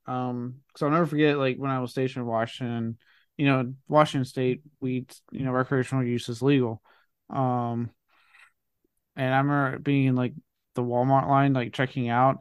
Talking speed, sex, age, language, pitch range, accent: 175 wpm, male, 20-39, English, 120-145 Hz, American